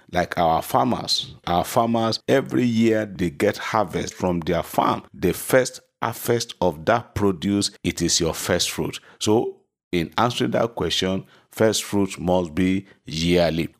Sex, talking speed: male, 150 wpm